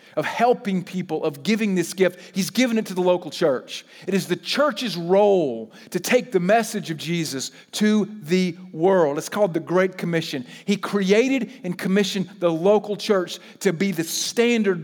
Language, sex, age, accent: English, male, 40-59, American